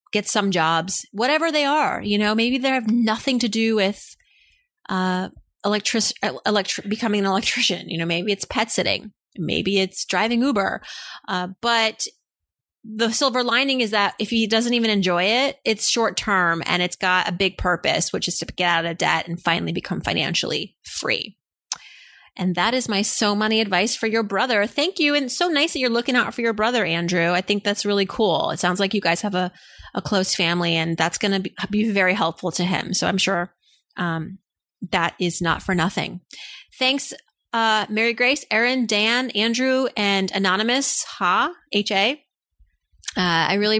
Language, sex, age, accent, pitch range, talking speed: English, female, 30-49, American, 185-230 Hz, 185 wpm